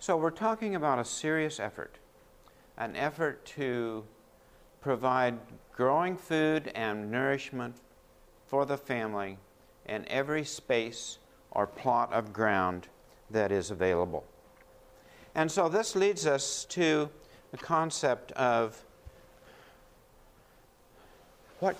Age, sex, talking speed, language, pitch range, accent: 60-79, male, 105 wpm, English, 120-160 Hz, American